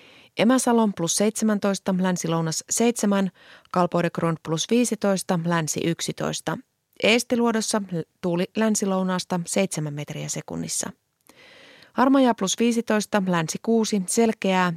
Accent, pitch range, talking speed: native, 170-215 Hz, 90 wpm